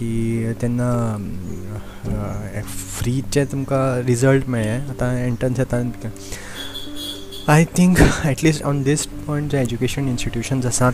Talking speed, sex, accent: 100 wpm, male, native